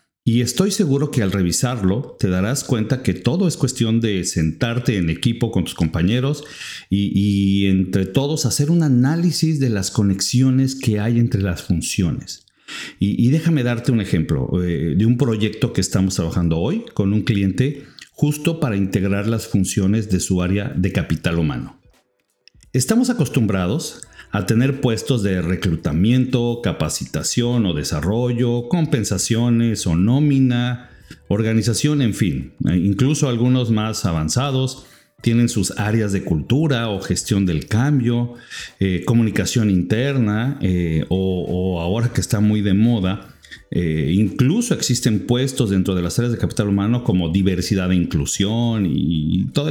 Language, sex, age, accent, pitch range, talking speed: Spanish, male, 50-69, Mexican, 95-125 Hz, 145 wpm